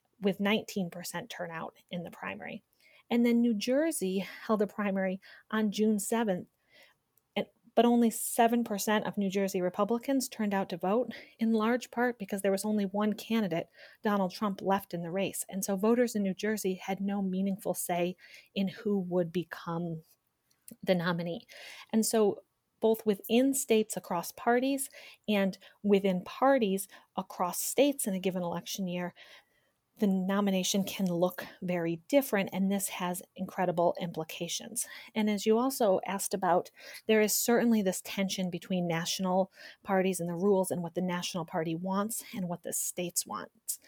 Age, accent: 30-49, American